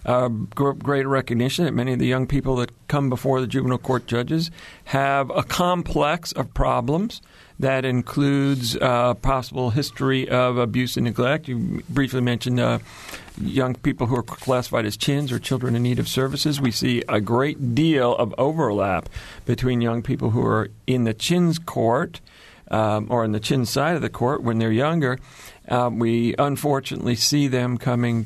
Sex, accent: male, American